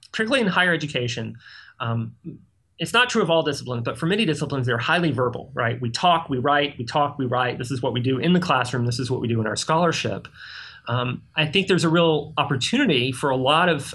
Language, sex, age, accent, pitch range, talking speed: English, male, 30-49, American, 125-160 Hz, 230 wpm